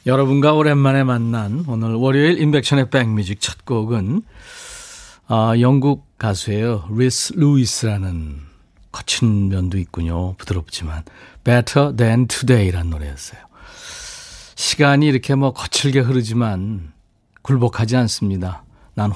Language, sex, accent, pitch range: Korean, male, native, 95-135 Hz